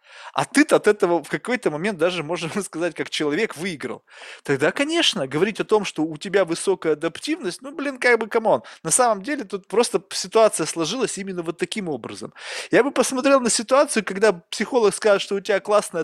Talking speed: 190 wpm